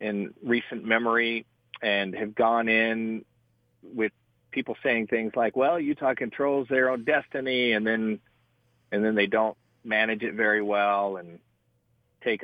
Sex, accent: male, American